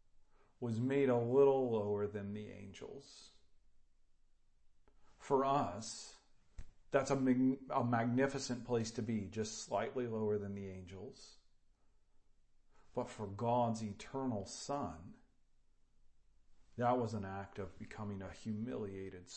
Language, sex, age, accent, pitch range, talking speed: English, male, 40-59, American, 100-130 Hz, 110 wpm